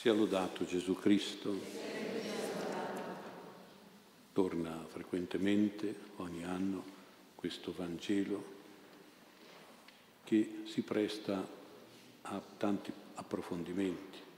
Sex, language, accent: male, Italian, native